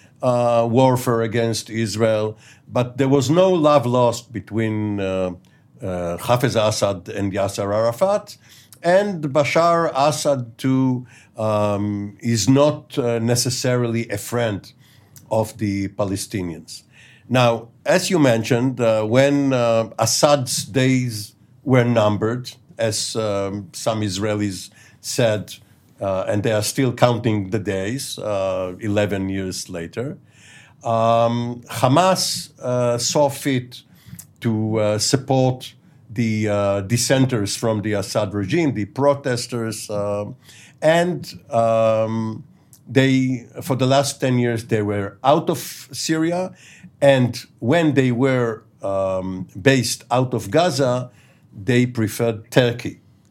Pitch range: 105-135 Hz